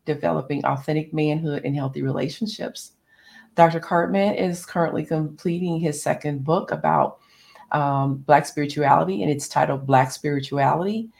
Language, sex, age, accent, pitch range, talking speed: English, female, 40-59, American, 130-155 Hz, 125 wpm